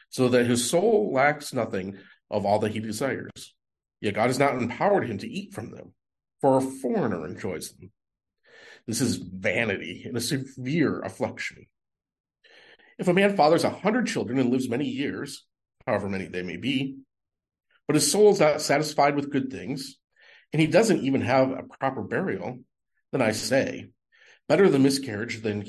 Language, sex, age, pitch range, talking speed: English, male, 40-59, 115-170 Hz, 170 wpm